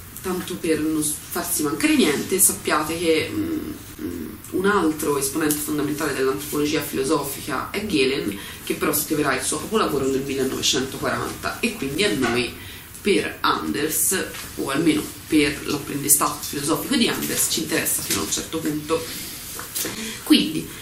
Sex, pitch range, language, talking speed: female, 145-225 Hz, Italian, 135 wpm